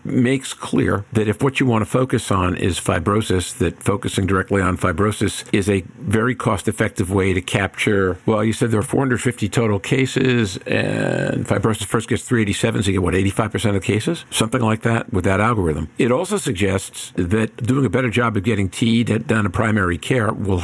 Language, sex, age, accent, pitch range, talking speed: English, male, 50-69, American, 95-120 Hz, 200 wpm